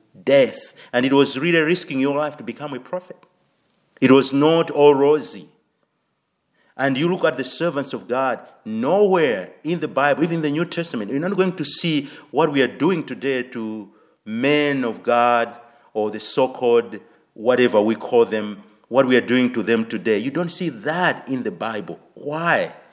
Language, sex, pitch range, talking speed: English, male, 115-155 Hz, 180 wpm